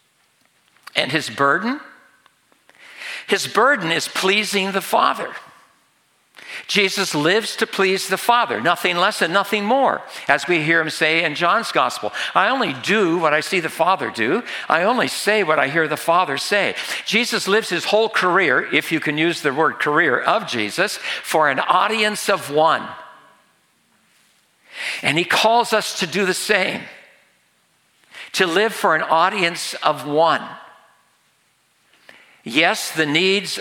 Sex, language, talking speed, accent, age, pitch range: male, English, 150 wpm, American, 60-79, 150-205 Hz